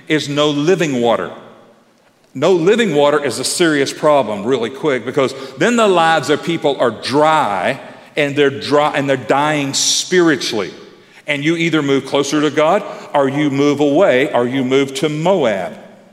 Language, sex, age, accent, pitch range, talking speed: English, male, 50-69, American, 140-170 Hz, 165 wpm